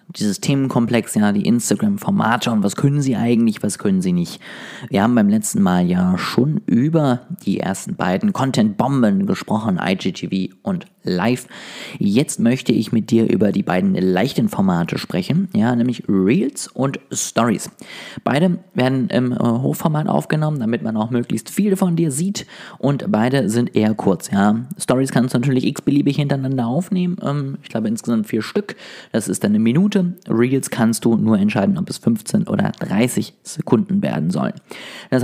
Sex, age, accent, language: male, 30-49, German, German